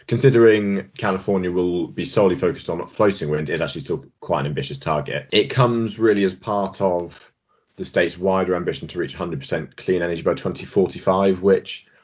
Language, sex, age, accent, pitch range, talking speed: English, male, 20-39, British, 80-100 Hz, 170 wpm